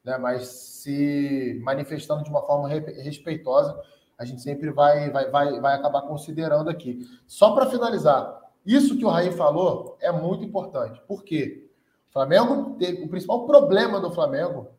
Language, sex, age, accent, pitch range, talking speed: Portuguese, male, 20-39, Brazilian, 165-220 Hz, 155 wpm